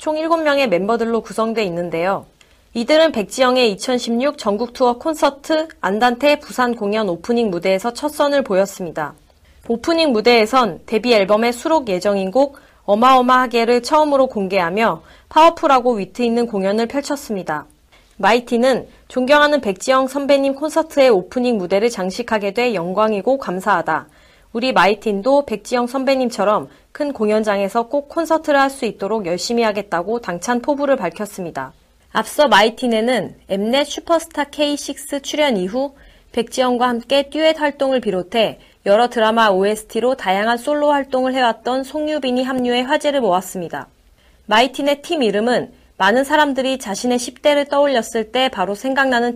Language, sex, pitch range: Korean, female, 205-275 Hz